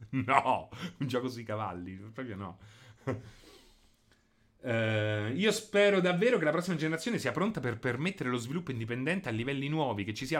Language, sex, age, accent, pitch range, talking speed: Italian, male, 30-49, native, 105-145 Hz, 160 wpm